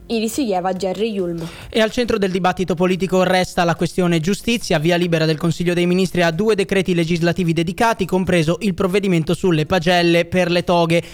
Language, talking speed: Italian, 180 wpm